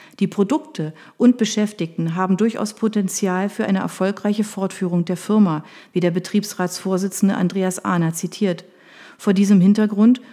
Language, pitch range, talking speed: German, 180-225 Hz, 130 wpm